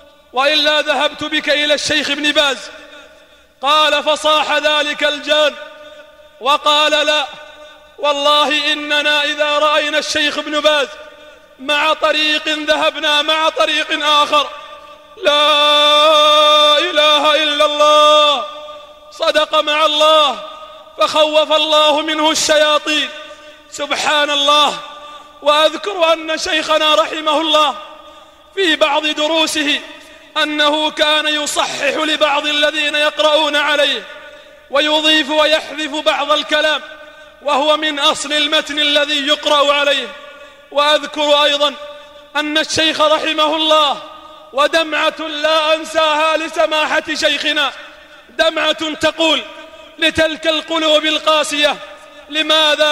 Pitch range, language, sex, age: 295-305 Hz, Arabic, male, 30-49